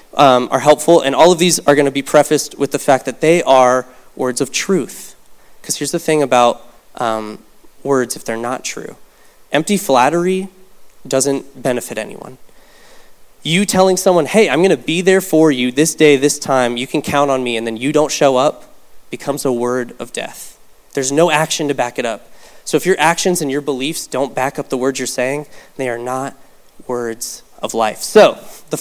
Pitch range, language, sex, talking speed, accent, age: 130-175 Hz, English, male, 200 wpm, American, 20-39